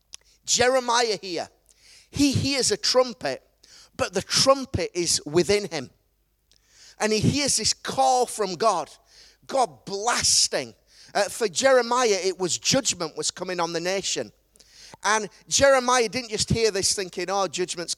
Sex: male